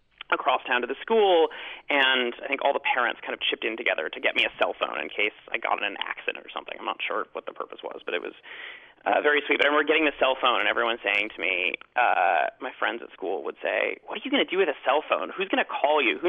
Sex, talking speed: male, 285 wpm